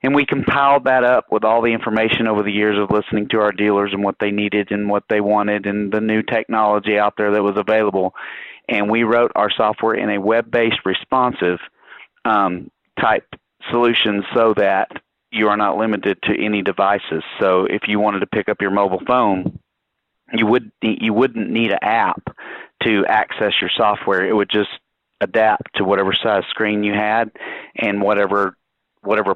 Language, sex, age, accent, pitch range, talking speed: English, male, 40-59, American, 100-110 Hz, 180 wpm